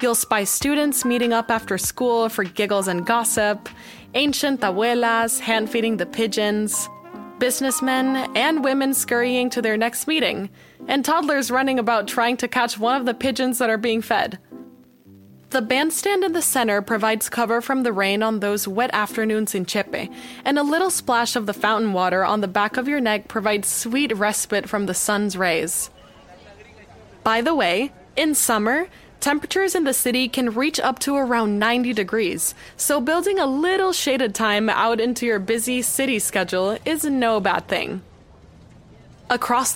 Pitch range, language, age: 210-270 Hz, English, 20-39